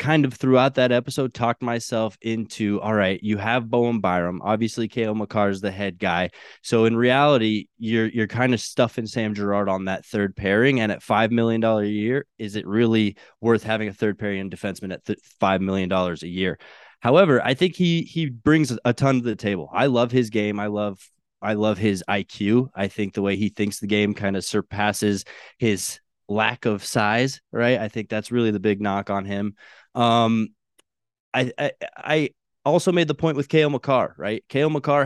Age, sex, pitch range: 20-39, male, 105-125 Hz